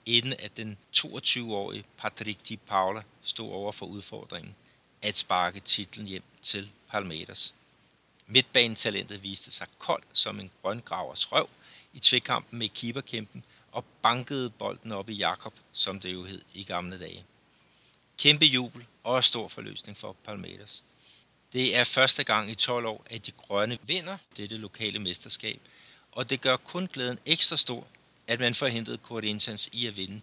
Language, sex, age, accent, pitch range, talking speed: Danish, male, 60-79, native, 105-125 Hz, 150 wpm